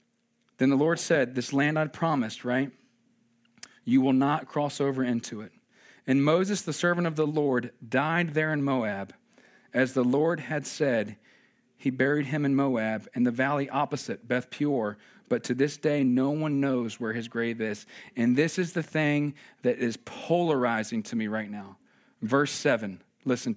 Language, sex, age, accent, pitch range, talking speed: English, male, 40-59, American, 130-175 Hz, 175 wpm